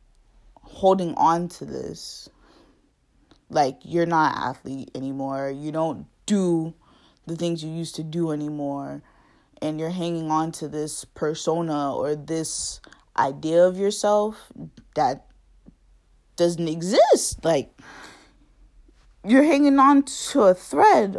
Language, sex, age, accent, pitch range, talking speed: English, female, 20-39, American, 155-190 Hz, 115 wpm